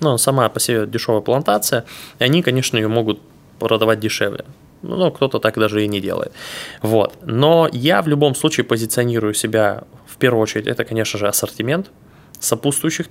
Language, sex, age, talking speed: Russian, male, 20-39, 165 wpm